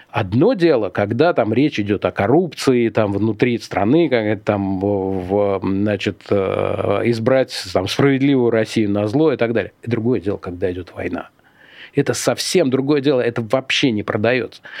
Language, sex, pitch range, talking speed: Russian, male, 110-155 Hz, 150 wpm